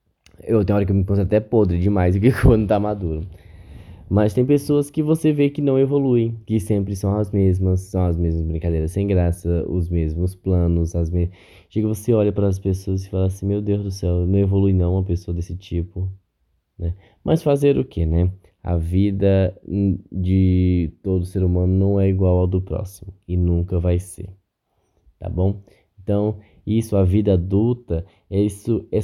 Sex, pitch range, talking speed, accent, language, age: male, 90-110 Hz, 190 wpm, Brazilian, Portuguese, 10-29